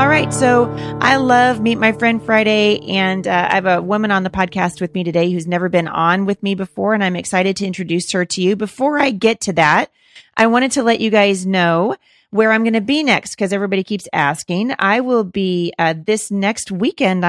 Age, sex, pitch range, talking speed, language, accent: 30-49, female, 175-210 Hz, 225 wpm, English, American